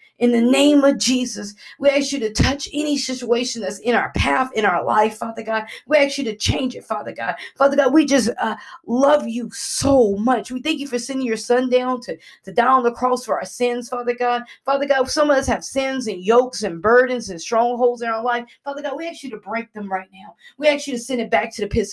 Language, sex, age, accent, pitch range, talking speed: English, female, 40-59, American, 205-265 Hz, 255 wpm